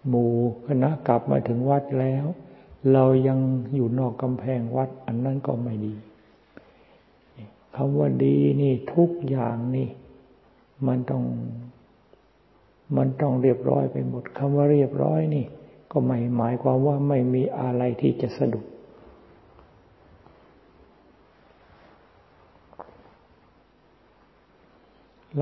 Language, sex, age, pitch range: Thai, male, 60-79, 120-135 Hz